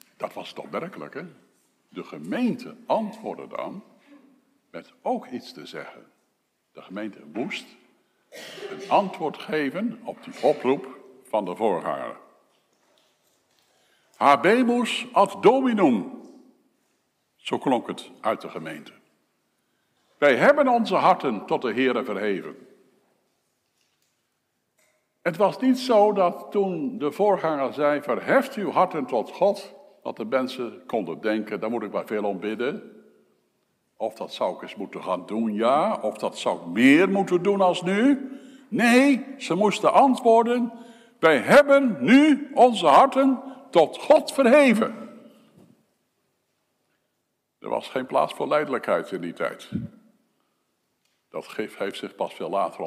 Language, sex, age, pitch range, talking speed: Dutch, male, 60-79, 180-265 Hz, 130 wpm